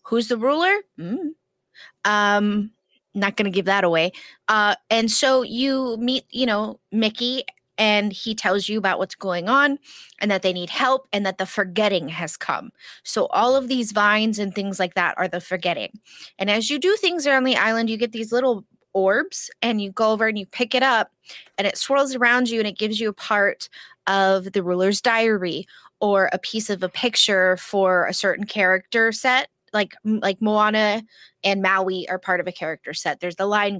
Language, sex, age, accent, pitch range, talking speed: English, female, 20-39, American, 195-245 Hz, 200 wpm